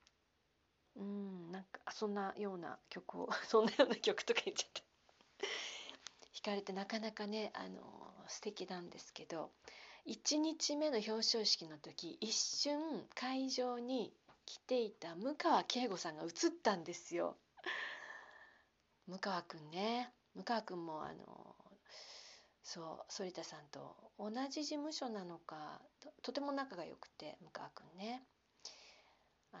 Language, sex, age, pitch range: Japanese, female, 40-59, 180-265 Hz